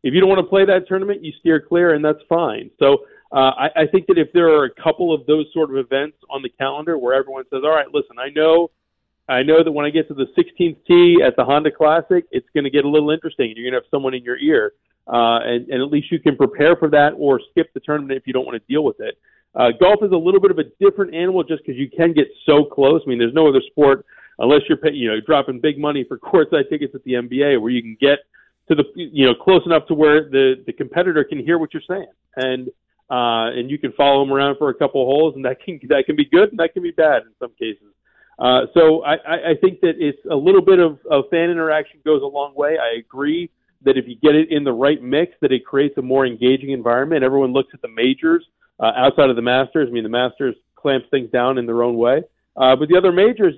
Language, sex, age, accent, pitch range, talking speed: English, male, 40-59, American, 130-170 Hz, 270 wpm